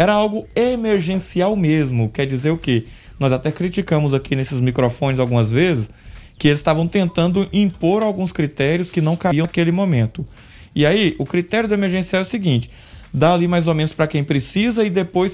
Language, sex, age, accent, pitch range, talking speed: Portuguese, male, 20-39, Brazilian, 125-175 Hz, 185 wpm